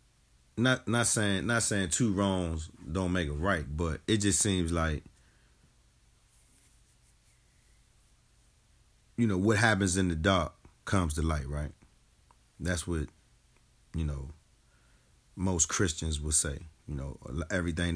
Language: English